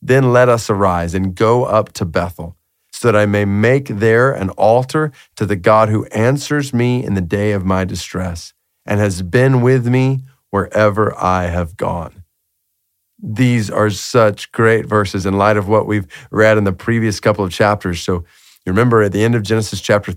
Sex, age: male, 40-59